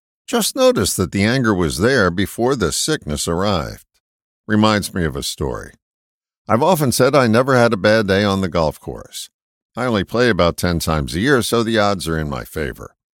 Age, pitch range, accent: 50-69, 80-120 Hz, American